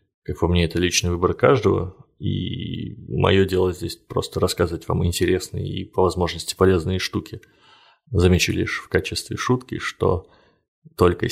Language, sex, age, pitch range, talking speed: Russian, male, 30-49, 85-100 Hz, 145 wpm